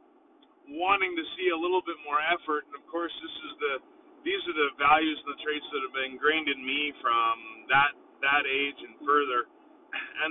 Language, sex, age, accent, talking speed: English, male, 30-49, American, 200 wpm